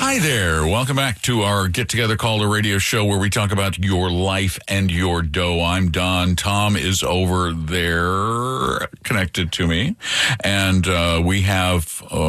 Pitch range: 90-115 Hz